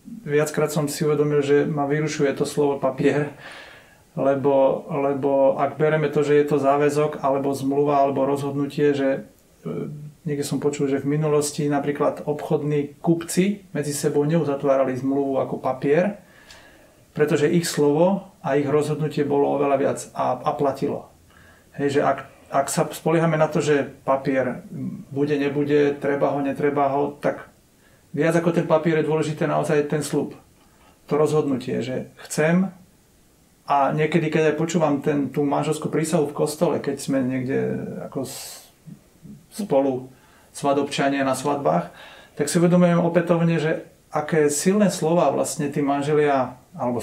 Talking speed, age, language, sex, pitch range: 145 wpm, 40-59, Slovak, male, 135-155 Hz